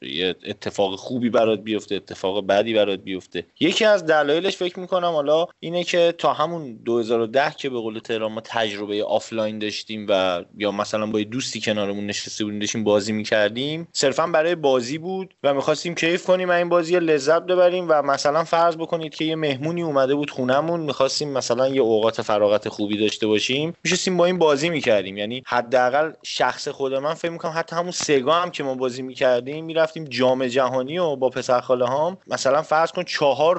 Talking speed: 180 wpm